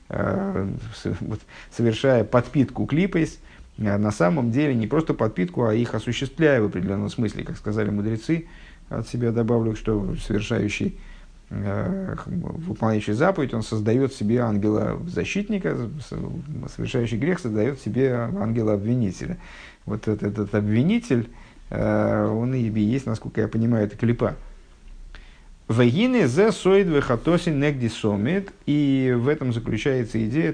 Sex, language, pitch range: male, Russian, 105-145 Hz